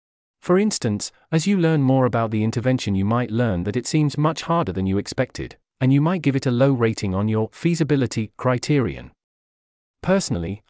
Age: 40-59